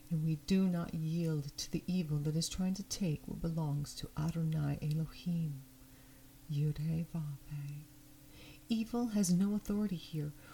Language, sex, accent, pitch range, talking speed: English, female, American, 140-195 Hz, 135 wpm